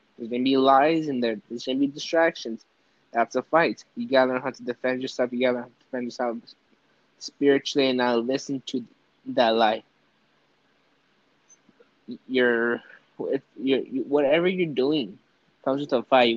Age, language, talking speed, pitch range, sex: 20-39, English, 160 wpm, 120-145 Hz, male